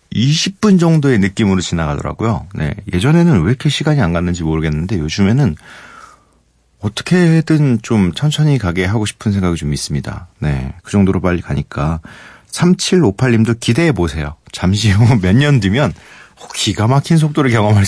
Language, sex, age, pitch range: Korean, male, 40-59, 90-135 Hz